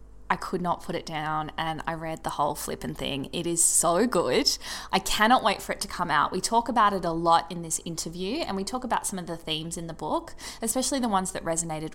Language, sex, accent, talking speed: English, female, Australian, 250 wpm